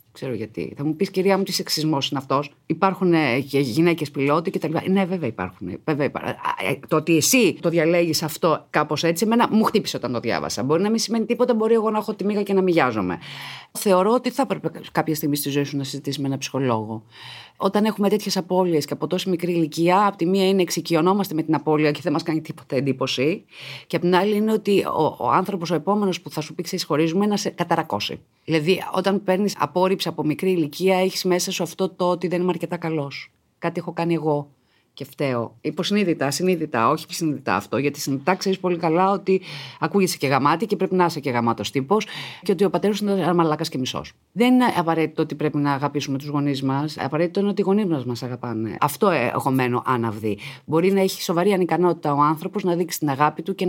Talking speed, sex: 215 wpm, female